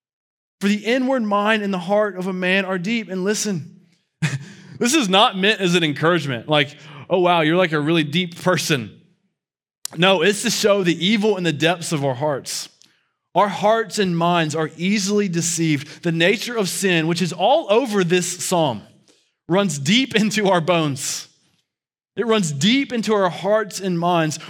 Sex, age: male, 20-39